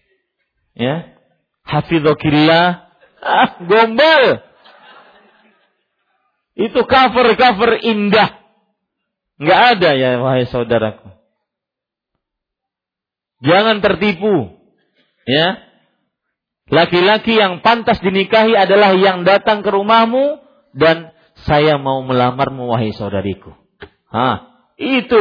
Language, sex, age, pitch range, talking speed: Malay, male, 50-69, 140-220 Hz, 75 wpm